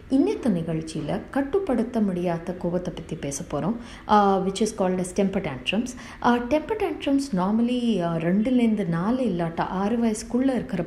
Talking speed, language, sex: 95 wpm, Telugu, female